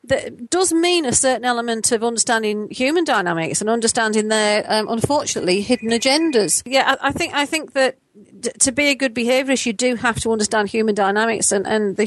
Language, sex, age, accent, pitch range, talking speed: English, female, 40-59, British, 215-280 Hz, 200 wpm